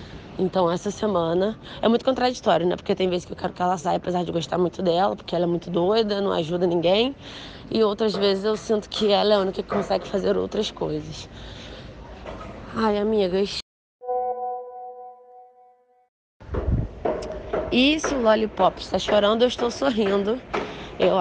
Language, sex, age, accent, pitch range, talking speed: Portuguese, female, 20-39, Brazilian, 180-230 Hz, 155 wpm